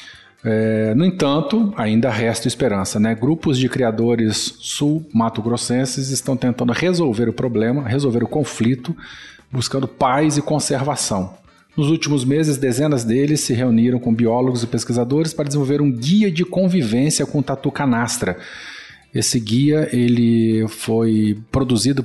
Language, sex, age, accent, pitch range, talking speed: Portuguese, male, 40-59, Brazilian, 115-140 Hz, 130 wpm